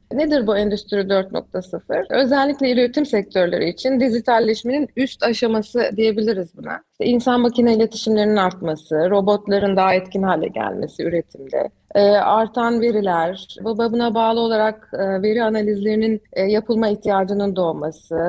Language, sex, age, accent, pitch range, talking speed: Turkish, female, 30-49, native, 205-255 Hz, 110 wpm